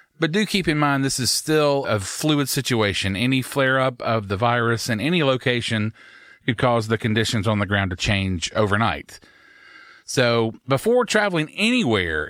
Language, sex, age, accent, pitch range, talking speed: English, male, 40-59, American, 110-145 Hz, 160 wpm